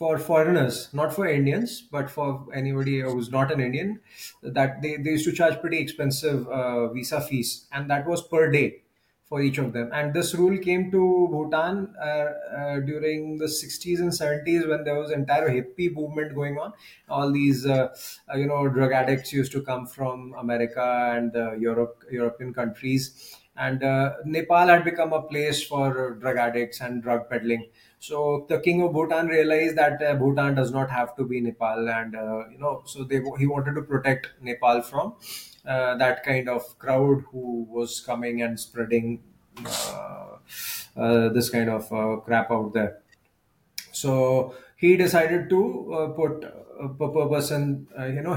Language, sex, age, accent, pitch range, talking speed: Hindi, male, 20-39, native, 120-150 Hz, 175 wpm